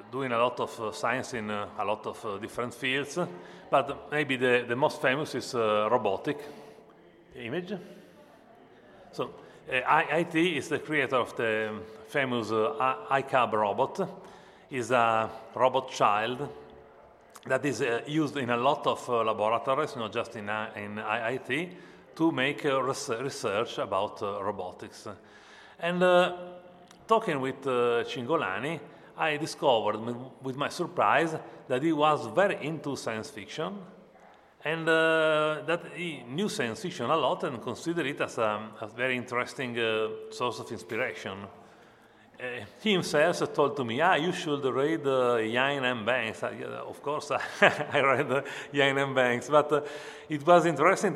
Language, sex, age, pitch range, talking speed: Italian, male, 30-49, 115-155 Hz, 135 wpm